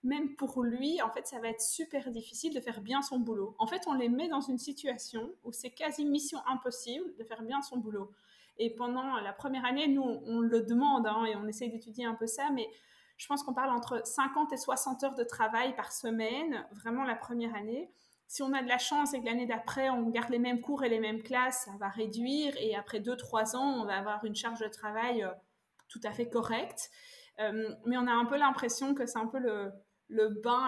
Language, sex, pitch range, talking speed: Dutch, female, 220-265 Hz, 235 wpm